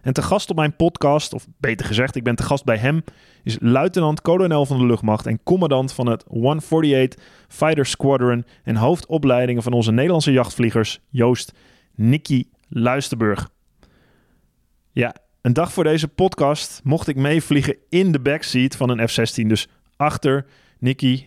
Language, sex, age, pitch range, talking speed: Dutch, male, 20-39, 120-145 Hz, 155 wpm